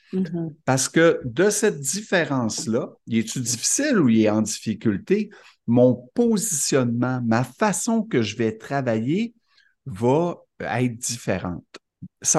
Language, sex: French, male